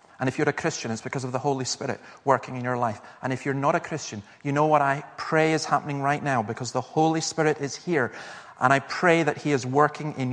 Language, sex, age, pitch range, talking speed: English, male, 40-59, 130-165 Hz, 255 wpm